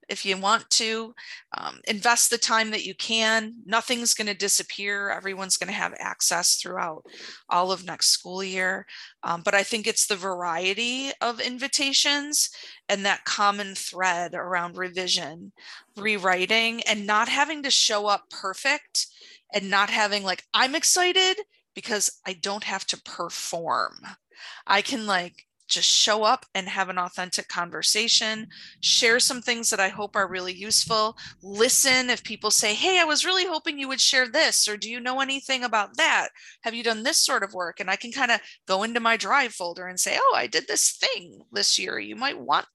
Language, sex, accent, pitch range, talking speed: English, female, American, 195-260 Hz, 180 wpm